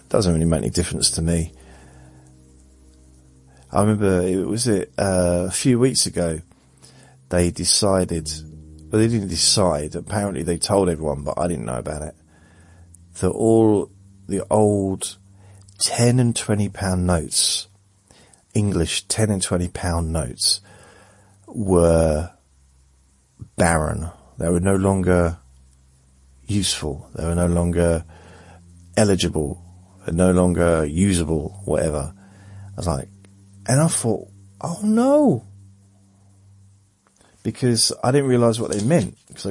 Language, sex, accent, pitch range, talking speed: English, male, British, 85-105 Hz, 125 wpm